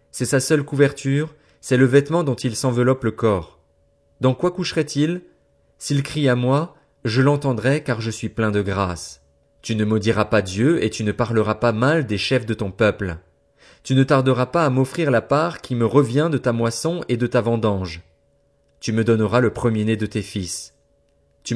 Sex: male